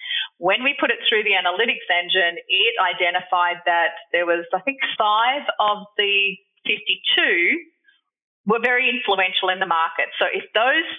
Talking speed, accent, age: 155 wpm, Australian, 30-49